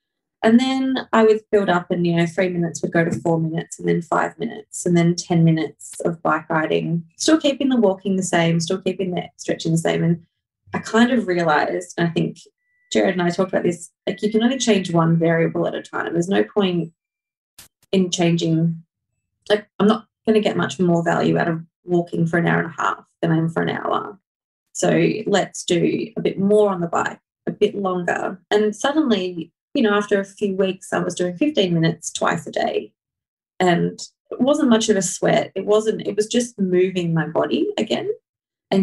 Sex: female